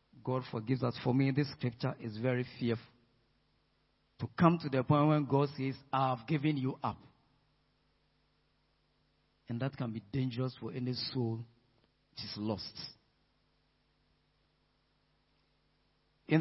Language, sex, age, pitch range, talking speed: English, male, 50-69, 130-180 Hz, 125 wpm